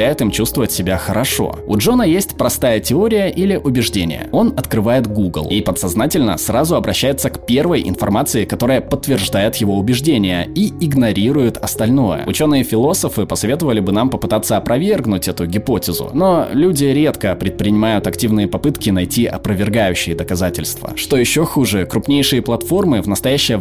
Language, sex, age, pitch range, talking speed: Russian, male, 20-39, 105-135 Hz, 130 wpm